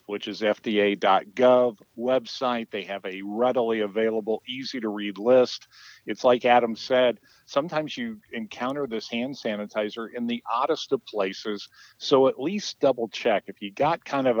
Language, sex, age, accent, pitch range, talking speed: English, male, 50-69, American, 105-130 Hz, 145 wpm